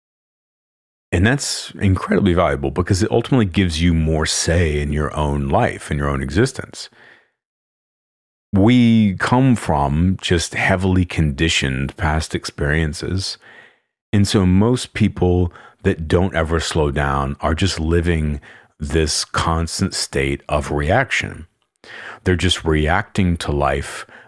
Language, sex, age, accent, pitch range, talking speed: English, male, 40-59, American, 75-95 Hz, 120 wpm